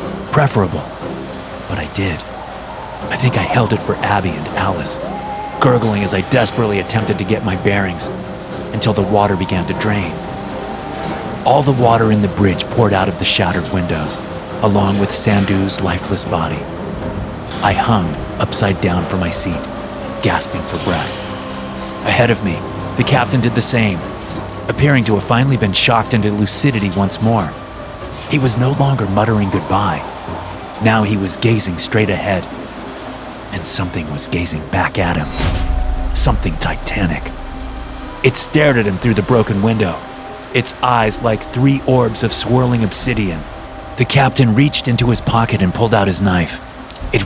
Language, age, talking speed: English, 30-49, 155 wpm